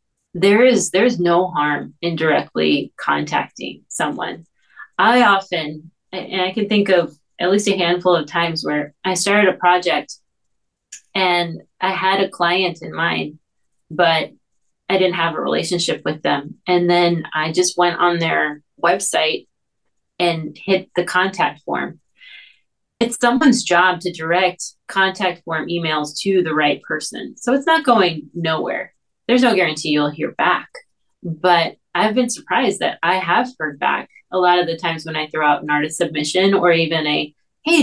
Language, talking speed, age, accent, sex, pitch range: English, 165 wpm, 30-49, American, female, 165-200 Hz